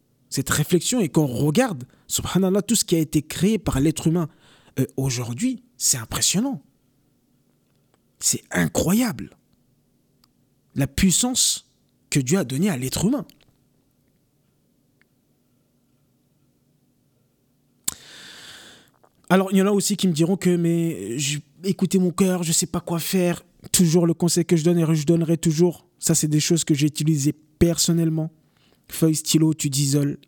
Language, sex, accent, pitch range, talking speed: French, male, French, 135-180 Hz, 140 wpm